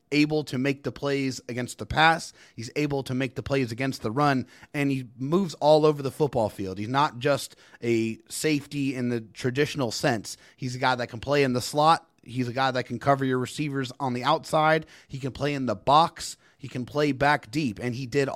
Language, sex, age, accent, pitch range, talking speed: English, male, 30-49, American, 125-150 Hz, 220 wpm